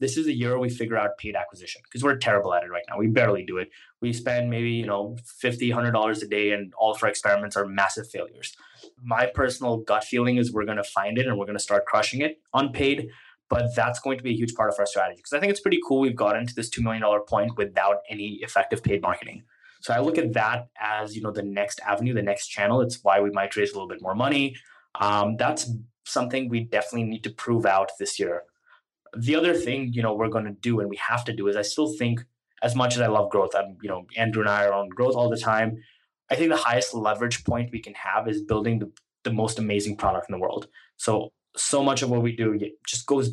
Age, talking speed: 20-39, 250 wpm